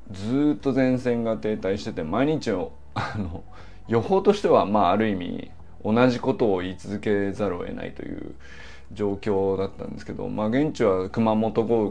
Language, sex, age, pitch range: Japanese, male, 20-39, 95-130 Hz